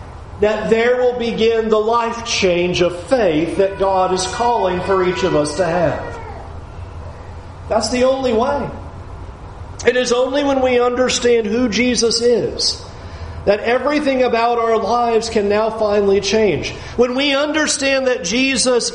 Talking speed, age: 145 wpm, 40-59